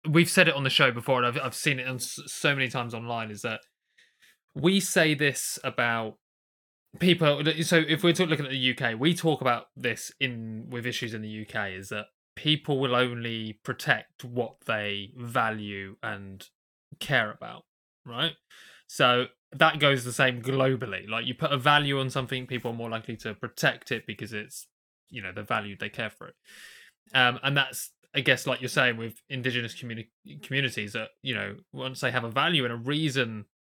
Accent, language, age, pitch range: British, English, 20-39, 110-145 Hz